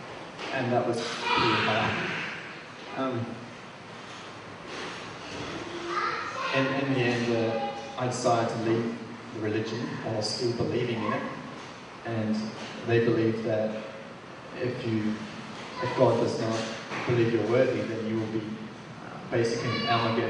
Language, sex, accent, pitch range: English, male, Australian, 110-120 Hz